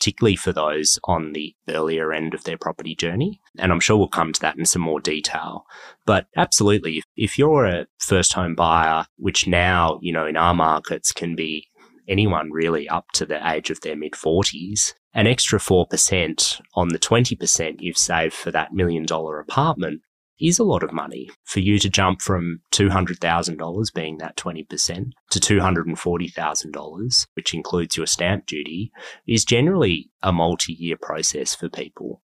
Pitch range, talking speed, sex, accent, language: 80-100 Hz, 185 wpm, male, Australian, English